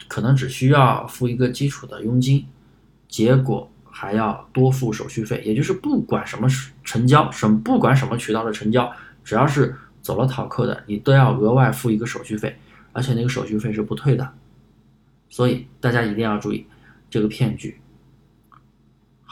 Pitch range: 110-135 Hz